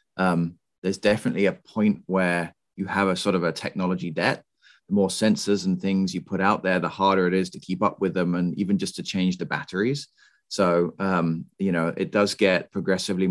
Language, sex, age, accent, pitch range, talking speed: English, male, 30-49, British, 90-105 Hz, 210 wpm